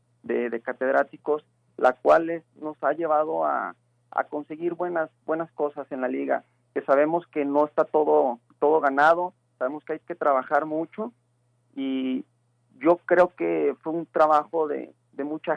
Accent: Mexican